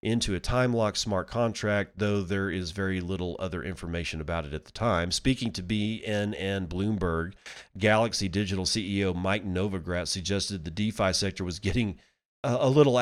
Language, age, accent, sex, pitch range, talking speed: English, 40-59, American, male, 90-110 Hz, 155 wpm